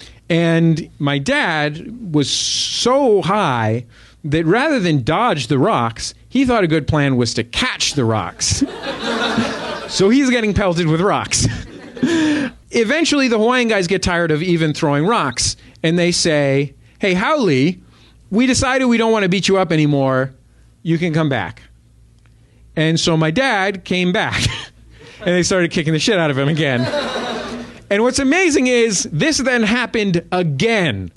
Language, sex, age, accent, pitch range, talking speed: English, male, 40-59, American, 150-225 Hz, 155 wpm